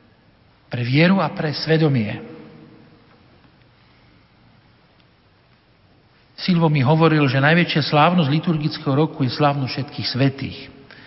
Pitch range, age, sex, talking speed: 150-170 Hz, 50-69, male, 90 wpm